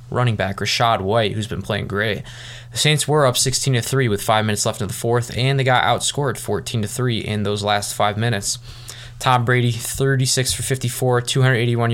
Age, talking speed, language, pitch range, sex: 20-39, 180 wpm, English, 115-125 Hz, male